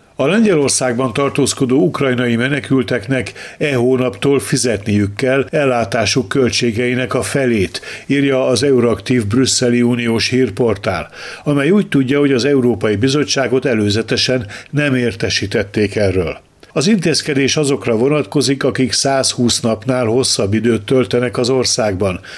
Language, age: Hungarian, 60-79